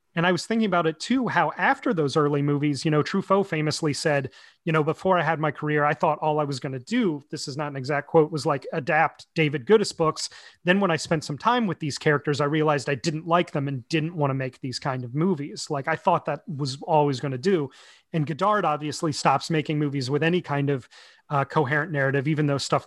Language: English